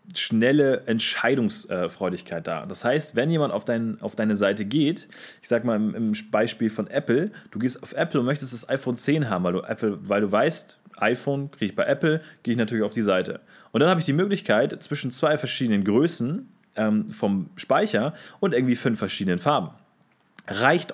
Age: 30-49